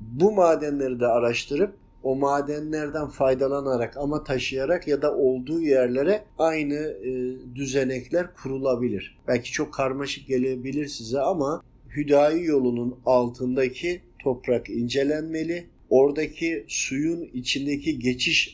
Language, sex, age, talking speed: Turkish, male, 50-69, 100 wpm